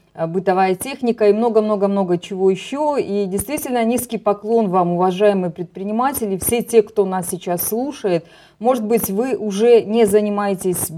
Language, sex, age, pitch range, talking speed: Russian, female, 30-49, 180-230 Hz, 135 wpm